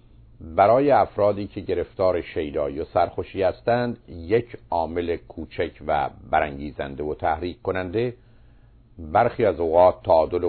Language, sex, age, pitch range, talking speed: Persian, male, 50-69, 85-115 Hz, 115 wpm